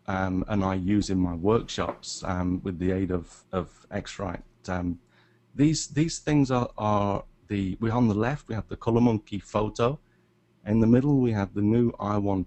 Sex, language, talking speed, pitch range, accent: male, English, 190 wpm, 90-110 Hz, British